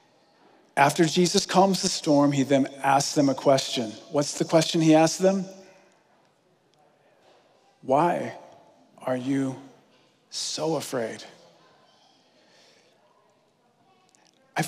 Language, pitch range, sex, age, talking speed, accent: English, 140-180 Hz, male, 40-59, 95 wpm, American